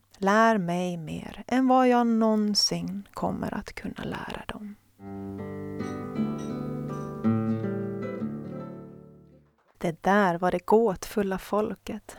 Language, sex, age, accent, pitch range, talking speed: Swedish, female, 30-49, native, 160-220 Hz, 90 wpm